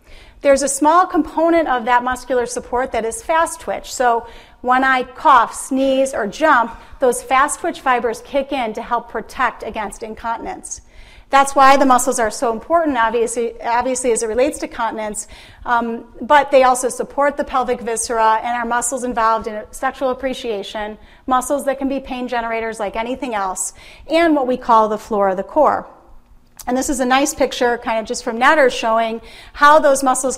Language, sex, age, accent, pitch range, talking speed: English, female, 40-59, American, 230-280 Hz, 180 wpm